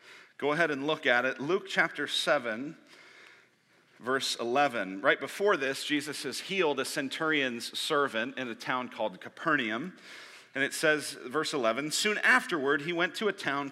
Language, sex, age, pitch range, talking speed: English, male, 40-59, 105-150 Hz, 160 wpm